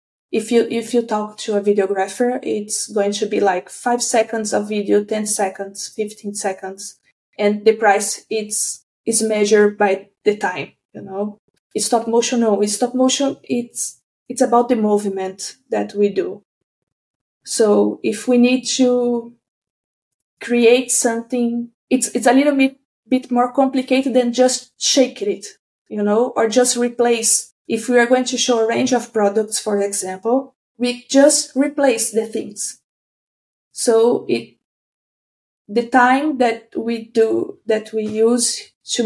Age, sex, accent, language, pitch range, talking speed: 20-39, female, Brazilian, English, 205-240 Hz, 150 wpm